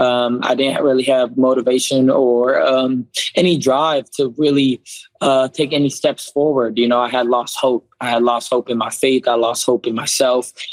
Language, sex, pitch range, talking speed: English, male, 130-145 Hz, 195 wpm